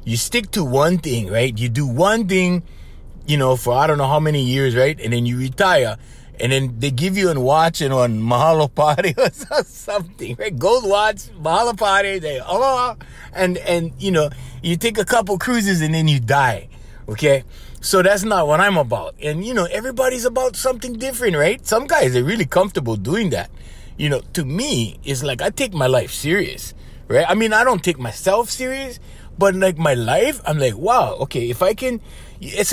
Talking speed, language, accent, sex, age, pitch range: 205 wpm, English, American, male, 30-49, 125-205 Hz